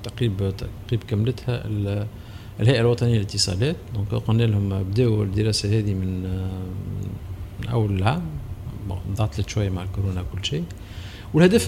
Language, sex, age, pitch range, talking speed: Arabic, male, 50-69, 100-125 Hz, 120 wpm